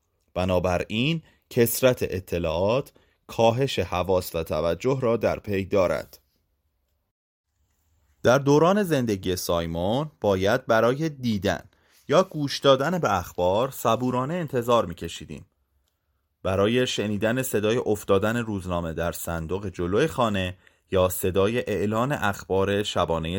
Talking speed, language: 105 wpm, Persian